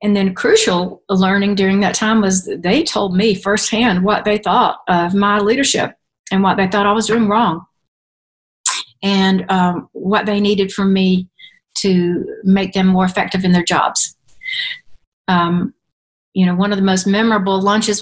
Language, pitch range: English, 185-215 Hz